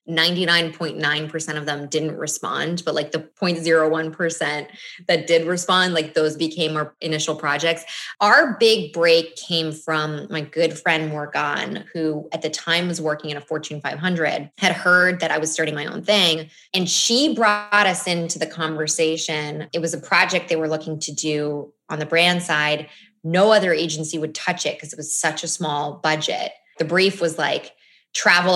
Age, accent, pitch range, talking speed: 20-39, American, 155-190 Hz, 175 wpm